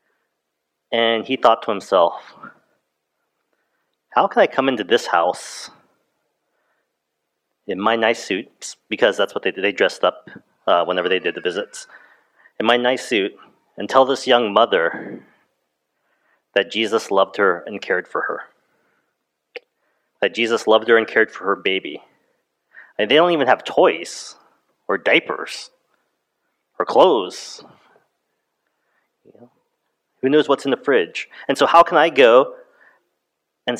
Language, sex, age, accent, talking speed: English, male, 30-49, American, 145 wpm